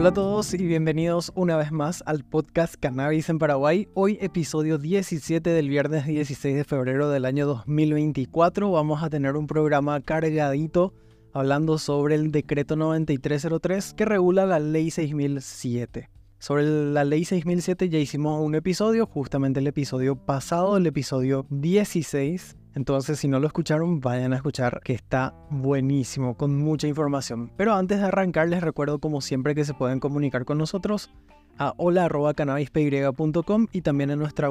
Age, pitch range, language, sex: 20-39, 140-165 Hz, Spanish, male